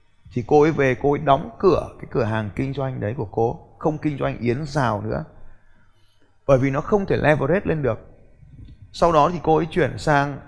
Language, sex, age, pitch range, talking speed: Vietnamese, male, 20-39, 115-155 Hz, 210 wpm